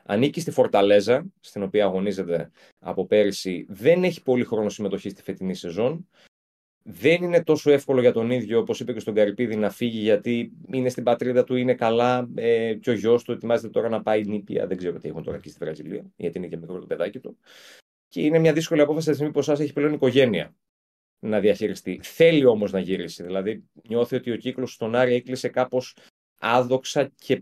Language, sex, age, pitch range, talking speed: Greek, male, 30-49, 100-130 Hz, 195 wpm